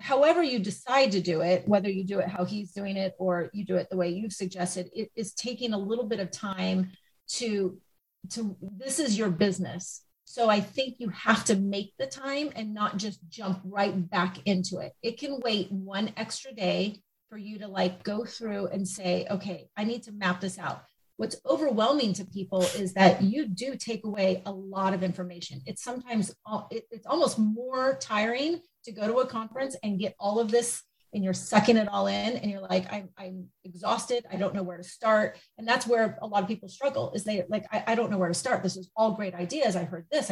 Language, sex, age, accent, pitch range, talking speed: English, female, 30-49, American, 190-235 Hz, 220 wpm